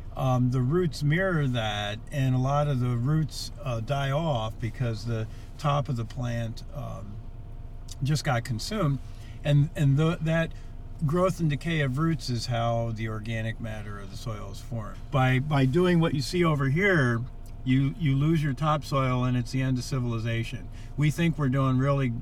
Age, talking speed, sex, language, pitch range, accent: 50-69, 180 wpm, male, English, 115-140 Hz, American